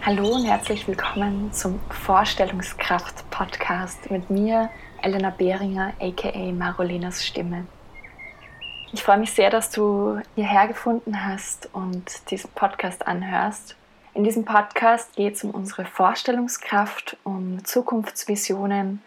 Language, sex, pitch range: German, female, 190-210 Hz